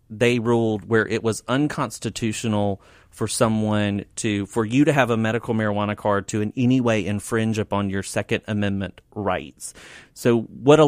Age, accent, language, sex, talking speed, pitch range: 30-49, American, English, male, 165 wpm, 100-115 Hz